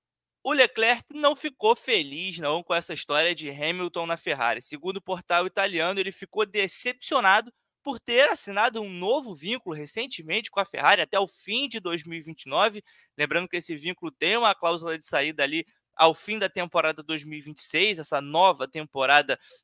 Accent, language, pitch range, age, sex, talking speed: Brazilian, Portuguese, 155-215 Hz, 20-39, male, 160 wpm